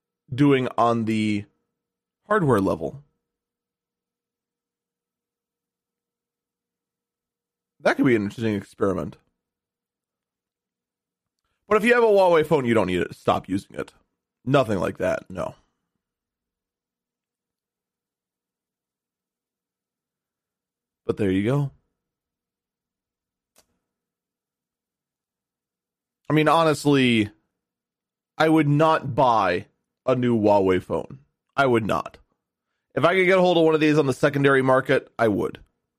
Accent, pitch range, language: American, 110-160 Hz, English